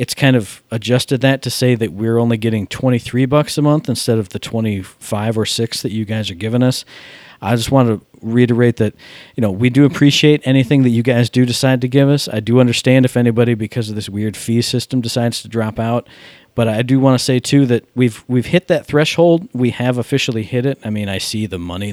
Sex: male